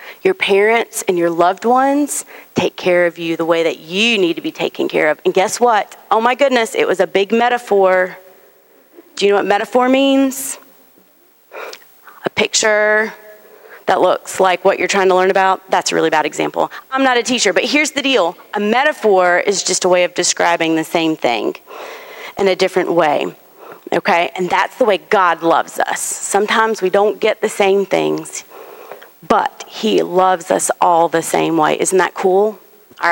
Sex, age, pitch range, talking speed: female, 30-49, 180-240 Hz, 185 wpm